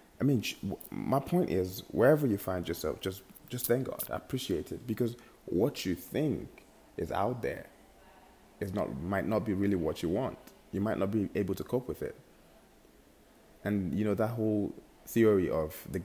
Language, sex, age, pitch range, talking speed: English, male, 20-39, 90-110 Hz, 185 wpm